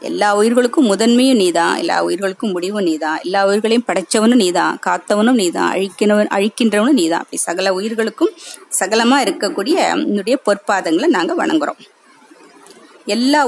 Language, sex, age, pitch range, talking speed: Tamil, female, 20-39, 200-275 Hz, 115 wpm